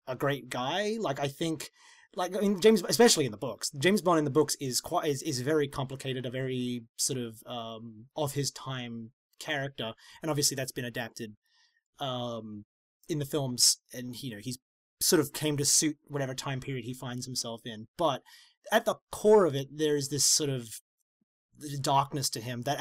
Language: English